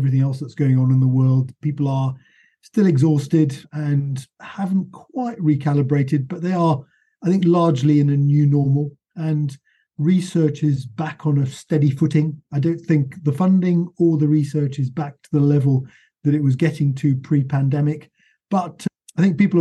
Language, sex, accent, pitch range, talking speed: English, male, British, 135-160 Hz, 175 wpm